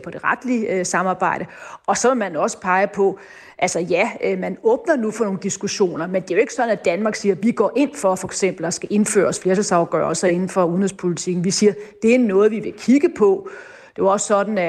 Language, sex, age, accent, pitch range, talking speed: Danish, female, 30-49, native, 185-220 Hz, 230 wpm